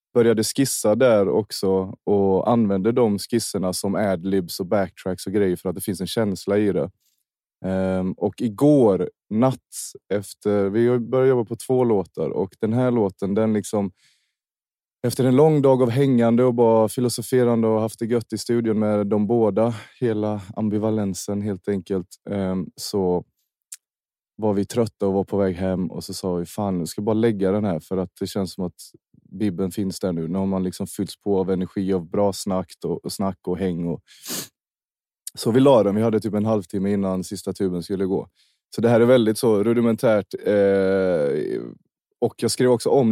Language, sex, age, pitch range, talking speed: English, male, 20-39, 95-115 Hz, 185 wpm